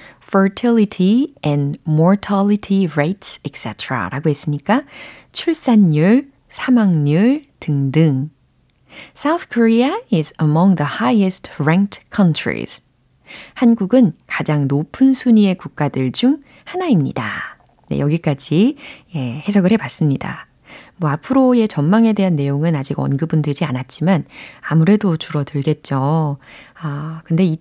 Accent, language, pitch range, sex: native, Korean, 150-225 Hz, female